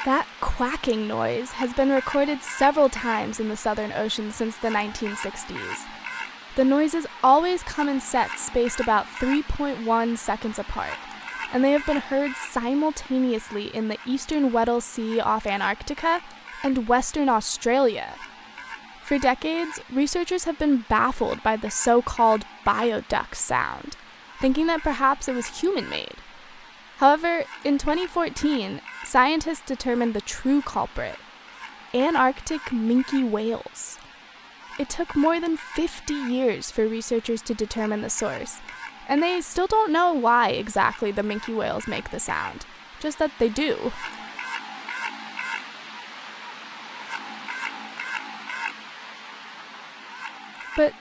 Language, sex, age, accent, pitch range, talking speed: English, female, 10-29, American, 230-310 Hz, 120 wpm